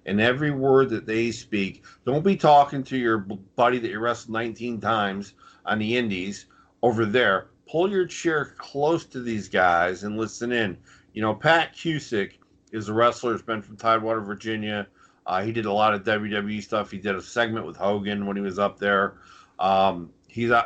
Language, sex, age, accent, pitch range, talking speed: English, male, 50-69, American, 100-120 Hz, 190 wpm